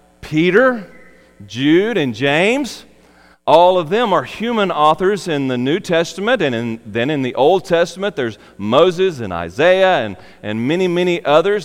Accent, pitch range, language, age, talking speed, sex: American, 125-190 Hz, English, 40-59, 155 wpm, male